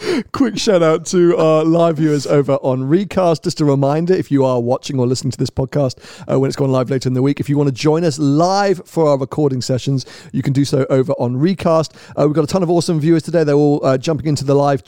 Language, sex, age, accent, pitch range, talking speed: English, male, 30-49, British, 130-180 Hz, 260 wpm